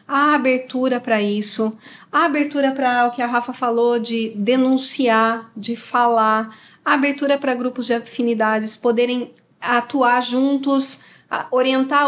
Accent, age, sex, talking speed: Brazilian, 40-59, female, 130 wpm